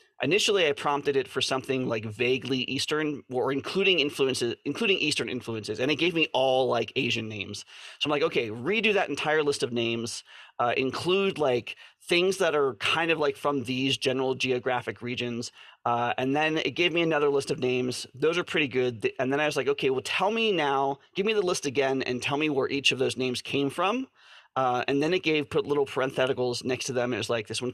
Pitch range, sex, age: 125-160 Hz, male, 30-49